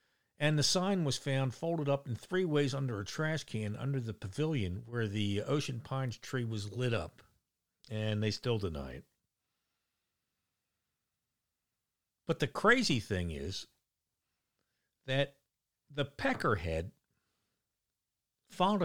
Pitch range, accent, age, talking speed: 105-145 Hz, American, 60-79, 125 wpm